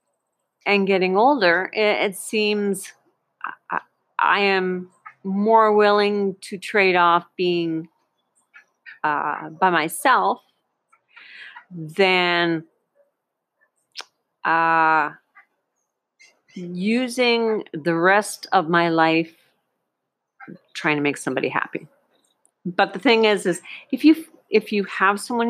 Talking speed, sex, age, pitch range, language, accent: 100 wpm, female, 50-69, 170-215 Hz, English, American